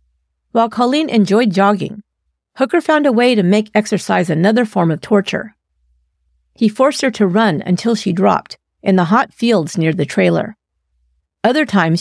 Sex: female